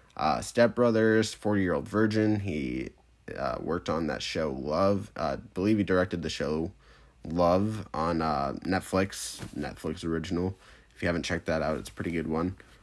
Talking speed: 170 wpm